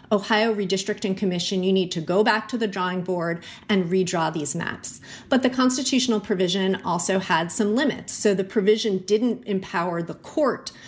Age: 30-49